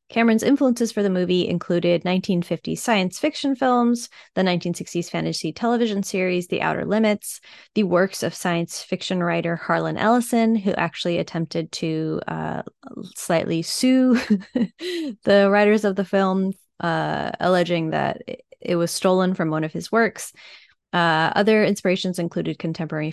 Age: 20-39